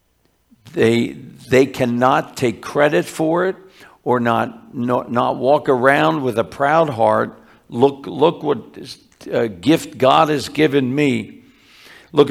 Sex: male